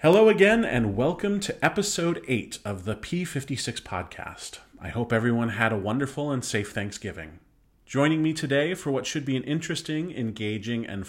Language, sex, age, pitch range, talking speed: English, male, 40-59, 100-140 Hz, 170 wpm